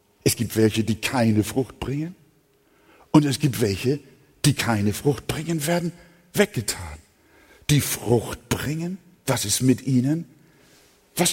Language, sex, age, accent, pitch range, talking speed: German, male, 60-79, German, 115-180 Hz, 130 wpm